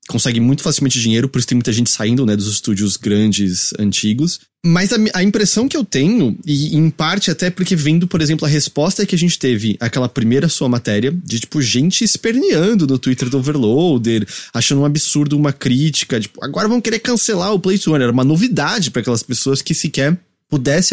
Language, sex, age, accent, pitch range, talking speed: English, male, 20-39, Brazilian, 115-170 Hz, 200 wpm